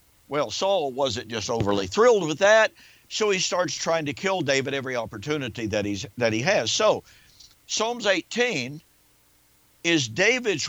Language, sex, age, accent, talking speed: English, male, 50-69, American, 150 wpm